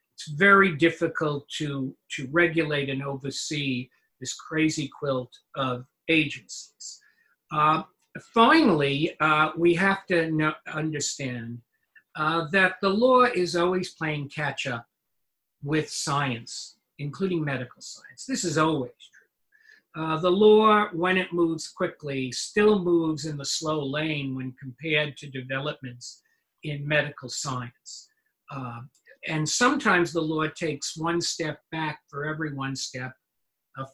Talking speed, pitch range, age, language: 125 wpm, 140-175 Hz, 50-69, English